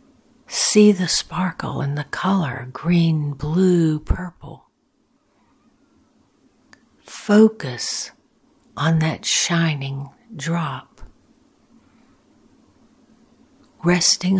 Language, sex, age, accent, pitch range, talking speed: English, female, 60-79, American, 160-245 Hz, 65 wpm